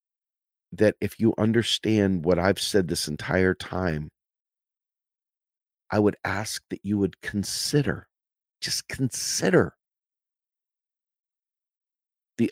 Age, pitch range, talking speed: 50-69, 90-120 Hz, 95 wpm